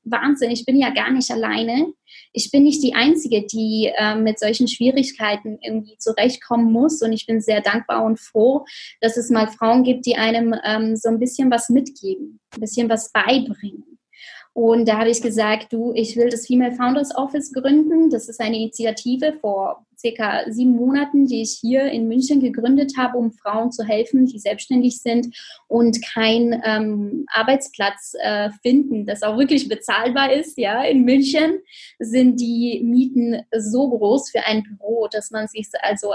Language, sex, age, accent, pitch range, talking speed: German, female, 20-39, German, 220-255 Hz, 175 wpm